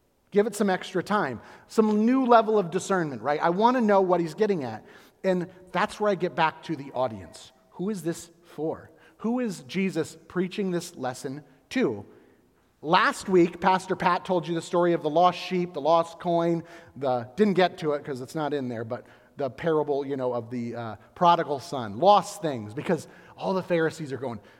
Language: English